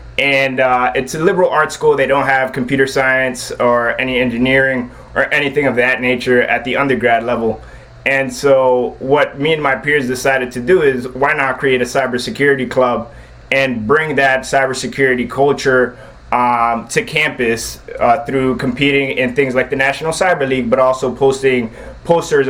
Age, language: 20-39, English